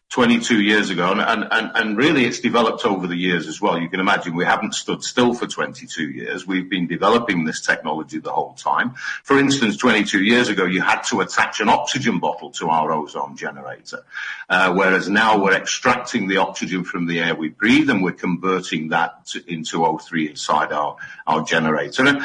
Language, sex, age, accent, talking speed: English, male, 50-69, British, 190 wpm